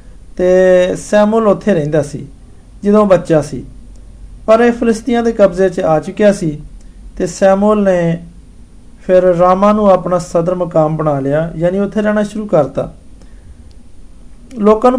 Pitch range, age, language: 160-215 Hz, 50-69, Hindi